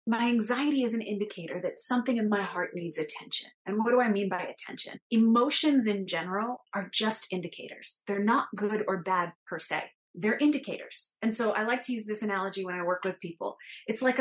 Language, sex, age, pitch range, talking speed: English, female, 30-49, 195-275 Hz, 205 wpm